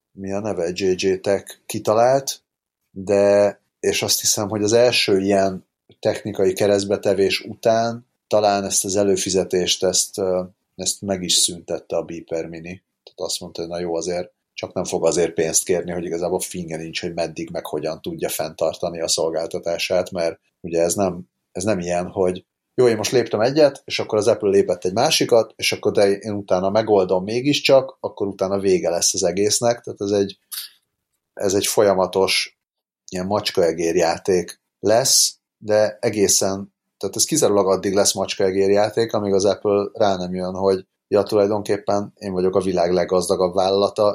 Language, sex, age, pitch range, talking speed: Hungarian, male, 30-49, 90-105 Hz, 160 wpm